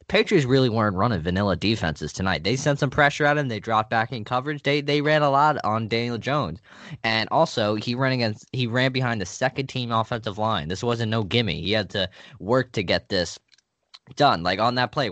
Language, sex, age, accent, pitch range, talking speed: English, male, 20-39, American, 90-125 Hz, 215 wpm